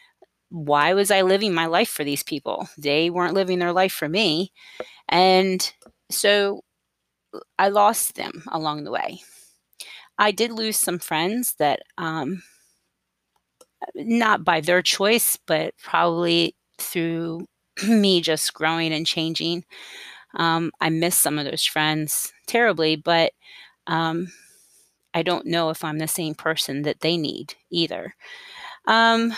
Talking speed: 135 wpm